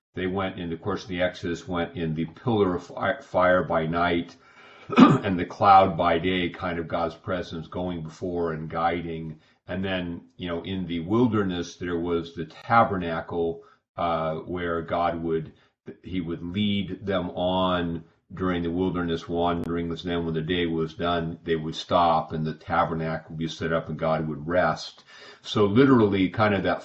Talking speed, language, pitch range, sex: 175 wpm, English, 85-95 Hz, male